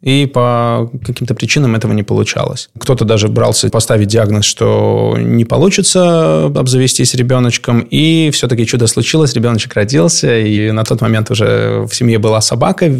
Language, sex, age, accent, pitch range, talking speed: Russian, male, 20-39, native, 110-135 Hz, 150 wpm